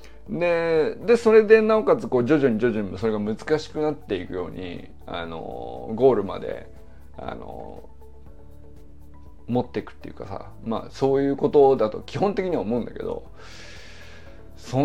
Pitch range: 105-170 Hz